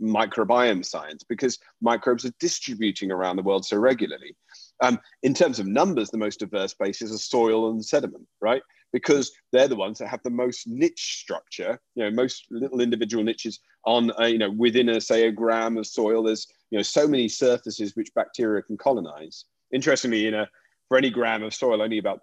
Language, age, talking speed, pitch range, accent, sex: English, 40-59, 195 wpm, 105-125 Hz, British, male